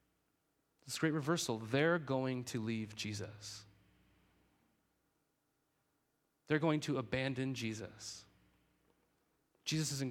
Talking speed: 90 wpm